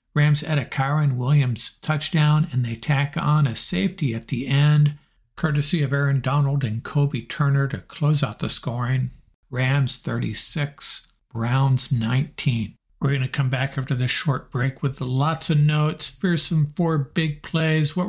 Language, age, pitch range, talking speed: English, 60-79, 125-155 Hz, 165 wpm